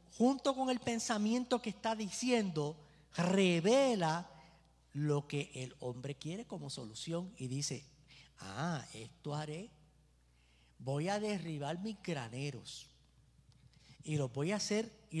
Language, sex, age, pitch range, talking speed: Spanish, male, 50-69, 125-190 Hz, 120 wpm